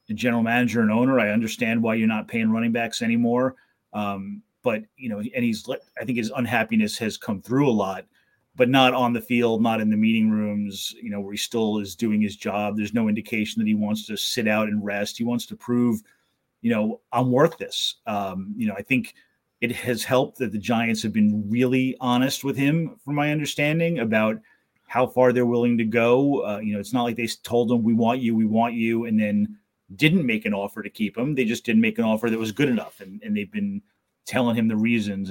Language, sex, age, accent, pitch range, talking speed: English, male, 30-49, American, 110-150 Hz, 235 wpm